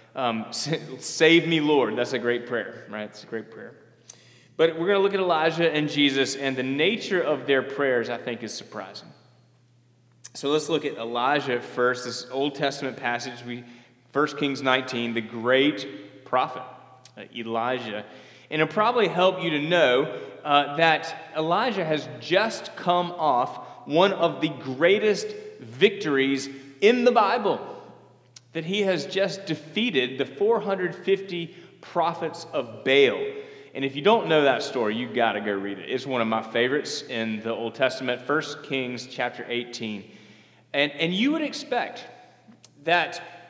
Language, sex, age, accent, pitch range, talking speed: English, male, 30-49, American, 125-190 Hz, 155 wpm